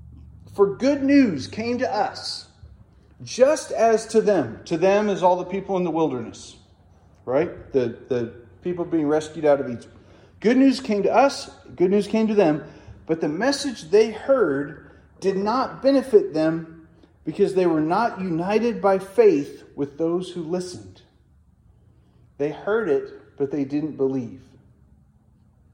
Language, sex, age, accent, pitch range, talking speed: English, male, 40-59, American, 140-210 Hz, 150 wpm